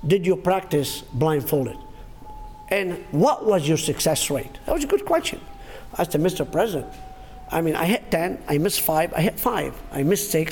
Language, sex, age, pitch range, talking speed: English, male, 50-69, 155-260 Hz, 185 wpm